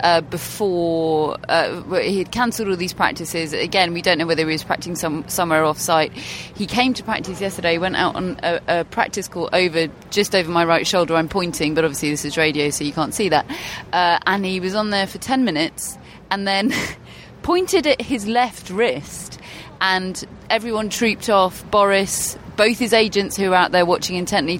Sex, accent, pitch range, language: female, British, 170-210 Hz, English